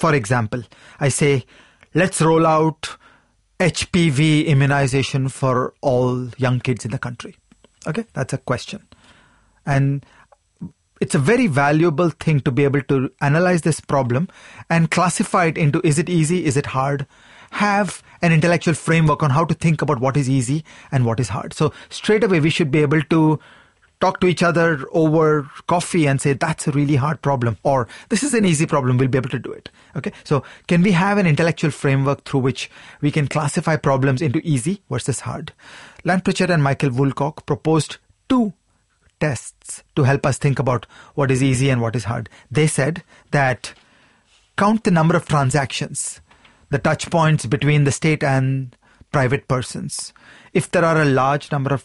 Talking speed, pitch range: 180 wpm, 135-165 Hz